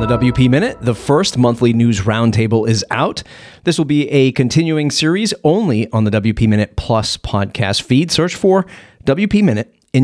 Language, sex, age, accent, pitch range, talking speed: English, male, 30-49, American, 110-140 Hz, 175 wpm